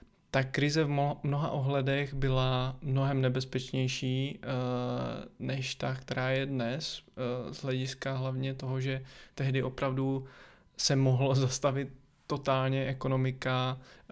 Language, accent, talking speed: Czech, native, 105 wpm